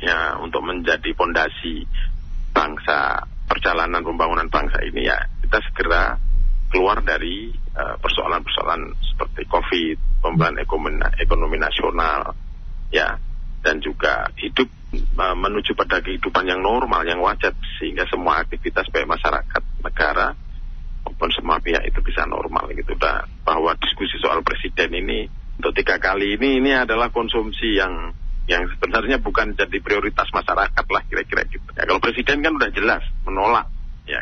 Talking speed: 135 wpm